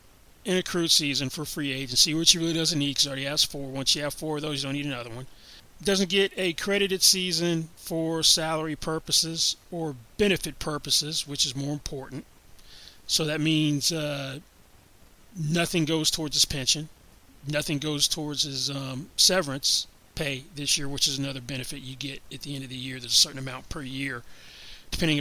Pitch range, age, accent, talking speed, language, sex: 135-160 Hz, 30-49, American, 190 wpm, English, male